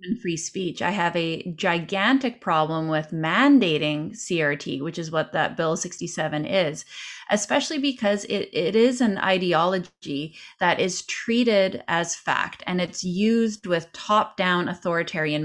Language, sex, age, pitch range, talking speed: English, female, 20-39, 165-210 Hz, 140 wpm